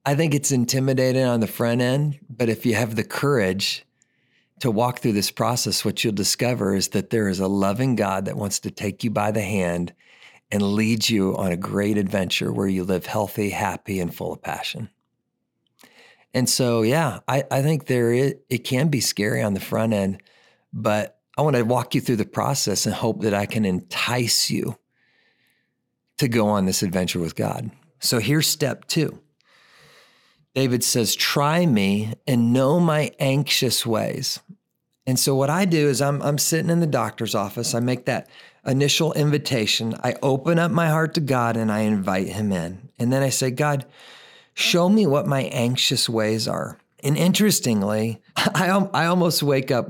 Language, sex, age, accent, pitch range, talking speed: English, male, 50-69, American, 110-145 Hz, 185 wpm